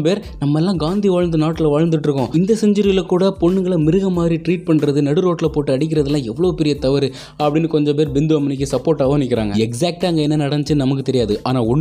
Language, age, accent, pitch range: Tamil, 20-39, native, 105-160 Hz